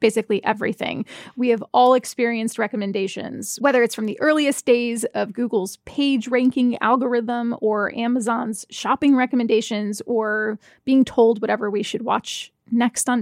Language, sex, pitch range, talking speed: English, female, 225-260 Hz, 140 wpm